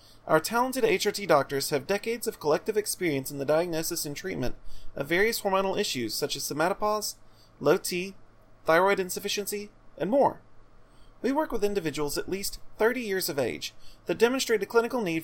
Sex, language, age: male, English, 30-49